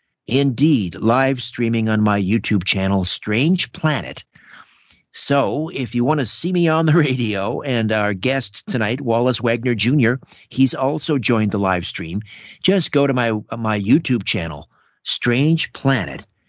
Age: 50-69